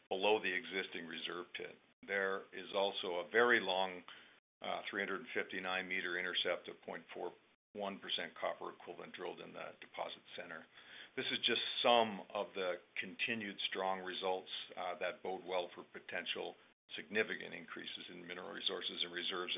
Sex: male